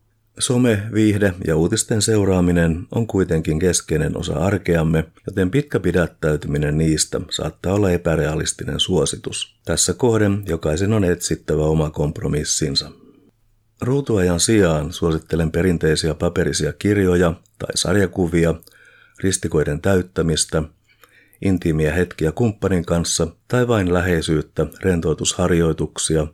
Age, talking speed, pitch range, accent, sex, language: 50-69, 100 wpm, 80-105 Hz, native, male, Finnish